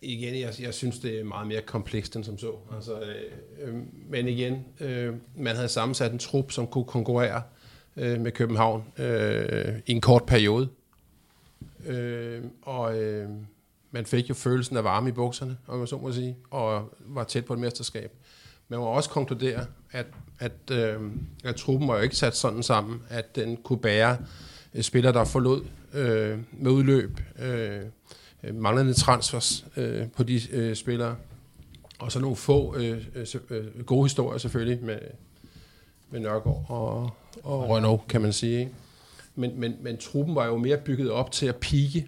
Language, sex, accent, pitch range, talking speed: Danish, male, native, 115-130 Hz, 165 wpm